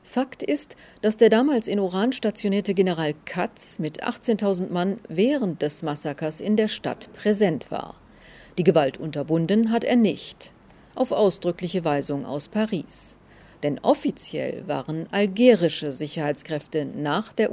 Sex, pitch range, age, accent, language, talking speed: female, 160-225 Hz, 50-69, German, German, 135 wpm